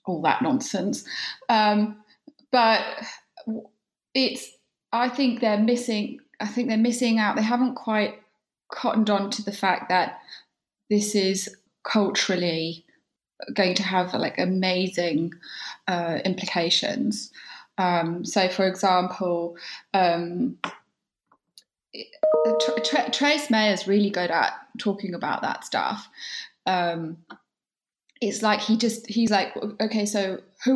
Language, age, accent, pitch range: English, 20-39, British, 185-235 Hz